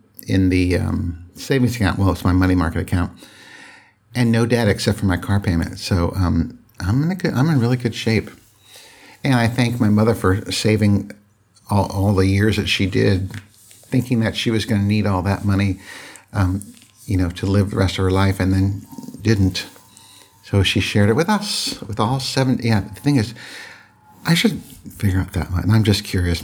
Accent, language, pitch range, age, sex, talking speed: American, English, 95-115 Hz, 60-79, male, 205 wpm